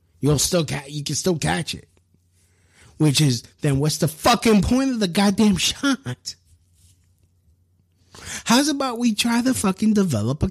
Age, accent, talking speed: 30-49, American, 155 wpm